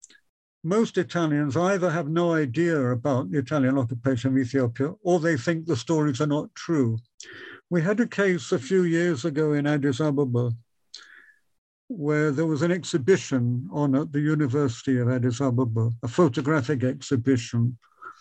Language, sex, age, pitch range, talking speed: English, male, 60-79, 130-165 Hz, 150 wpm